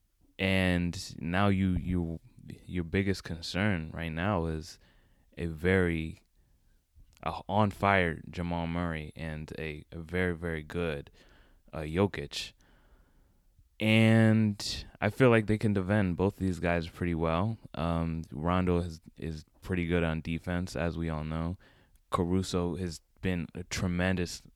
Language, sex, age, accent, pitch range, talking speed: English, male, 20-39, American, 80-90 Hz, 130 wpm